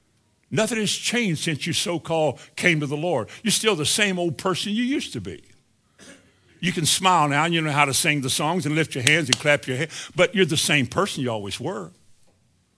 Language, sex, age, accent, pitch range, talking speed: English, male, 60-79, American, 120-180 Hz, 225 wpm